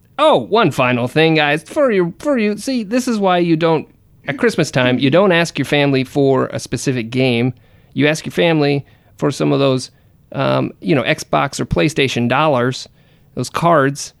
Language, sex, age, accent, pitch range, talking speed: English, male, 30-49, American, 125-155 Hz, 180 wpm